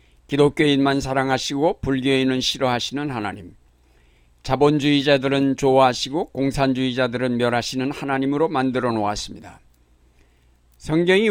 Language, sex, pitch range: Korean, male, 115-145 Hz